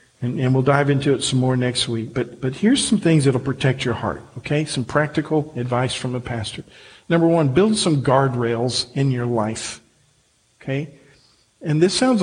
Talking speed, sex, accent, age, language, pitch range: 190 wpm, male, American, 50-69, English, 125-165 Hz